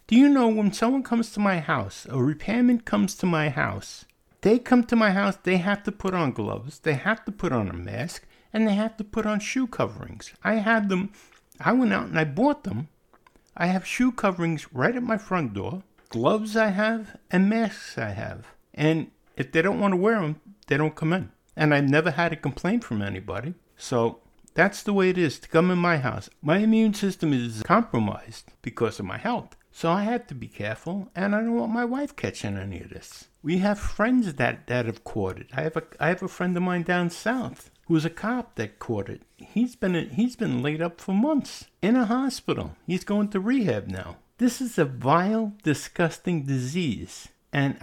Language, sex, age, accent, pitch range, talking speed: English, male, 60-79, American, 135-215 Hz, 215 wpm